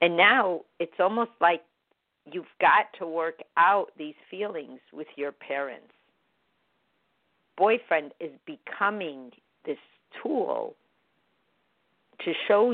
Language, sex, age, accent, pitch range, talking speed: English, female, 50-69, American, 145-190 Hz, 105 wpm